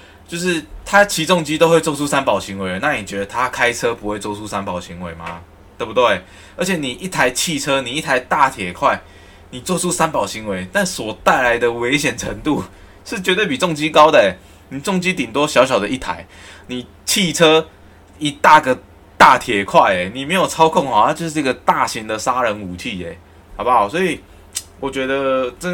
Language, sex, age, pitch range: Chinese, male, 20-39, 95-145 Hz